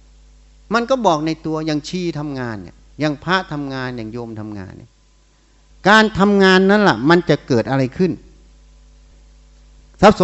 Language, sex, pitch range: Thai, male, 140-195 Hz